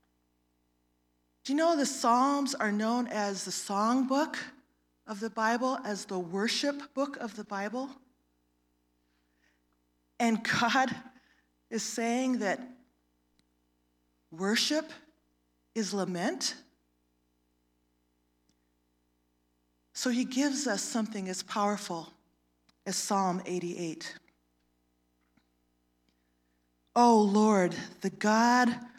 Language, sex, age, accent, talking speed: English, female, 40-59, American, 85 wpm